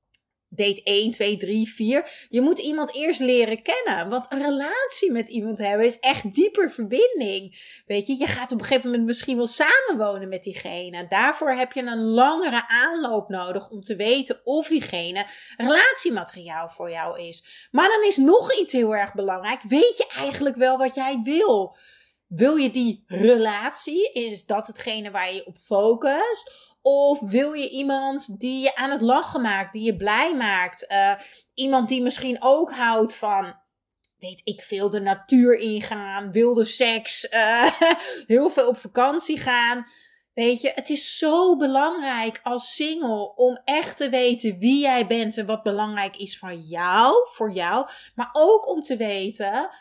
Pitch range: 205-280 Hz